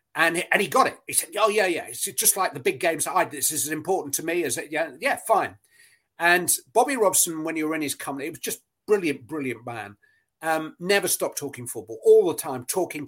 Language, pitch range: English, 140-200 Hz